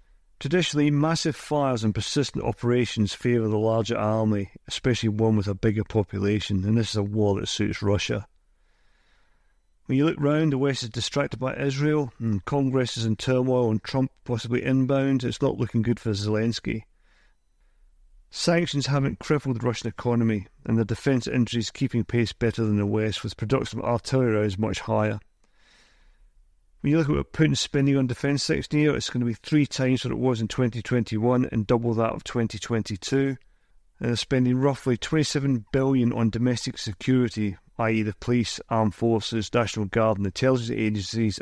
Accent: British